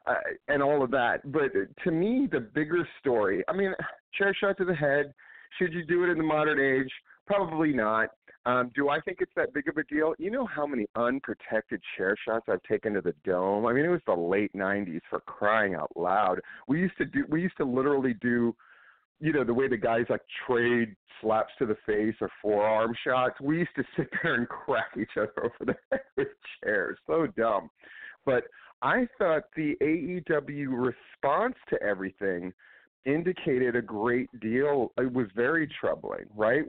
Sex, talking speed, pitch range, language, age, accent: male, 190 wpm, 125-175 Hz, English, 40-59, American